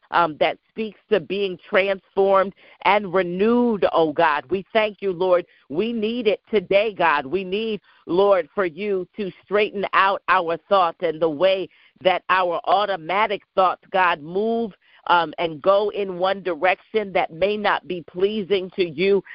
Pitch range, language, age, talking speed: 180-215 Hz, English, 50-69, 160 wpm